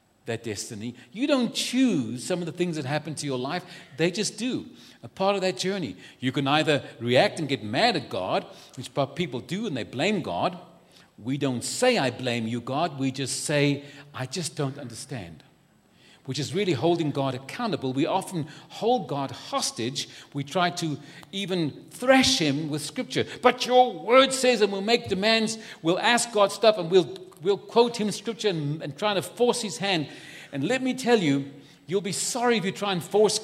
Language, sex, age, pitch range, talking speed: English, male, 50-69, 150-210 Hz, 195 wpm